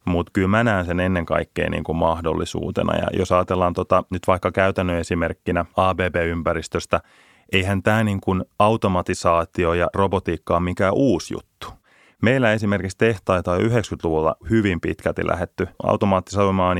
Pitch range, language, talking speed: 85-100 Hz, Finnish, 130 wpm